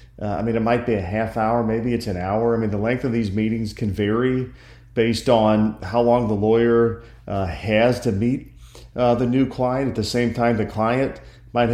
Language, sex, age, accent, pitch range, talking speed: English, male, 40-59, American, 105-120 Hz, 220 wpm